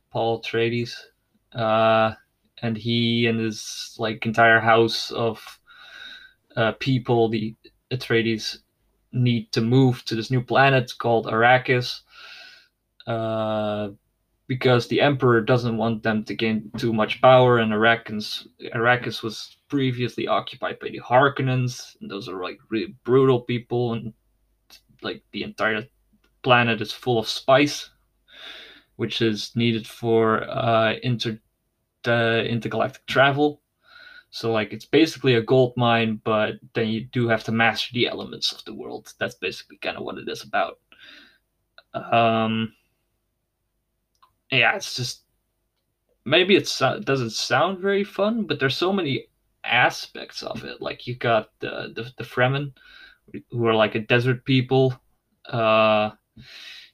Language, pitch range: English, 110-125 Hz